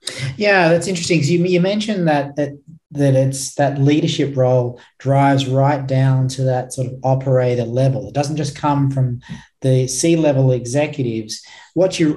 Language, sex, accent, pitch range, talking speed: English, male, Australian, 130-150 Hz, 160 wpm